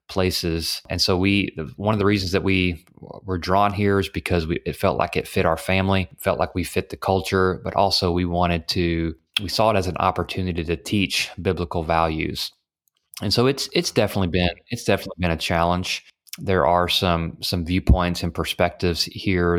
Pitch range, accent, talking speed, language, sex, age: 85-100 Hz, American, 195 wpm, English, male, 30-49